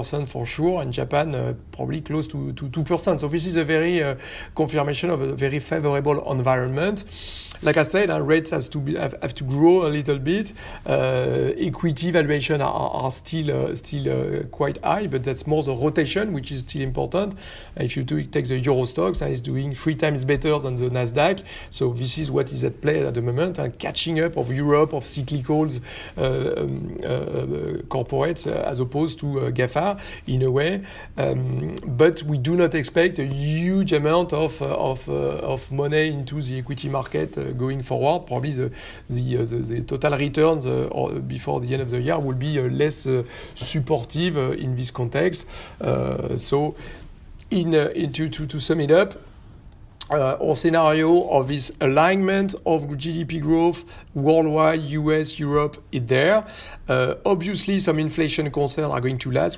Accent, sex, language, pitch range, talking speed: French, male, French, 130-160 Hz, 185 wpm